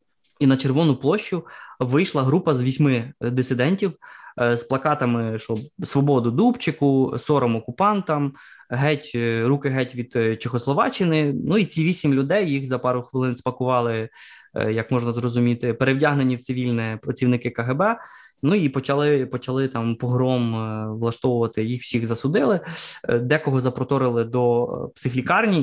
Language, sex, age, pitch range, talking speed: Ukrainian, male, 20-39, 120-145 Hz, 125 wpm